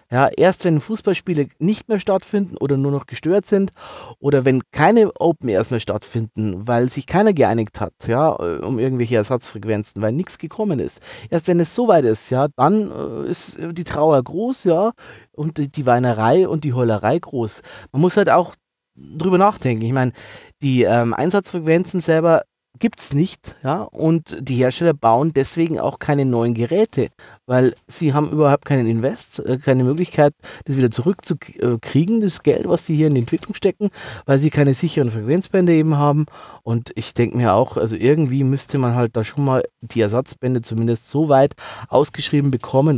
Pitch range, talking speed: 120-165 Hz, 175 wpm